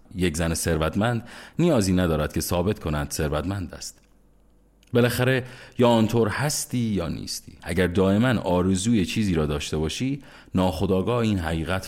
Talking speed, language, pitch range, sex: 130 wpm, Persian, 80-105 Hz, male